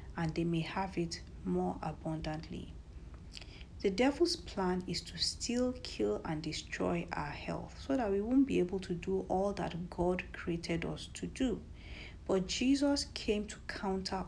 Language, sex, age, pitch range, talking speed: English, female, 50-69, 165-220 Hz, 160 wpm